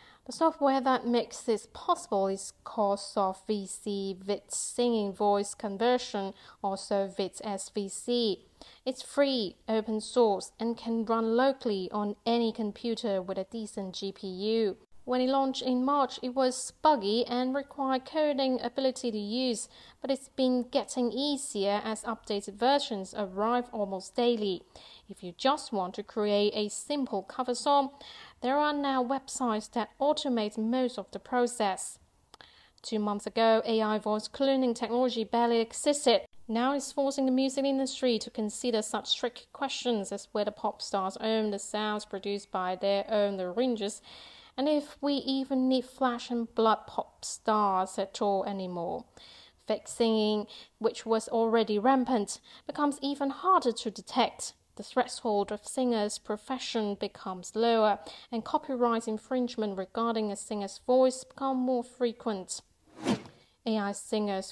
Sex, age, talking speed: female, 40-59, 140 wpm